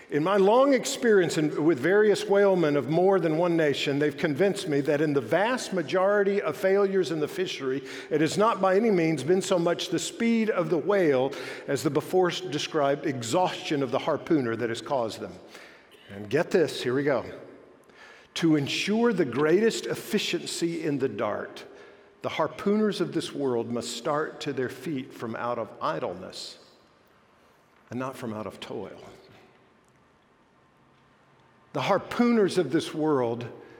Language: English